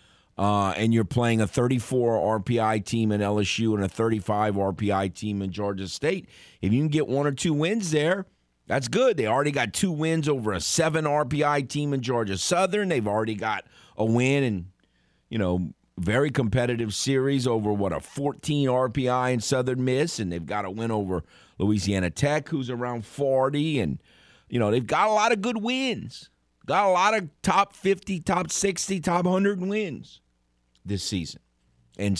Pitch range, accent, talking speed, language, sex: 95-145 Hz, American, 180 wpm, English, male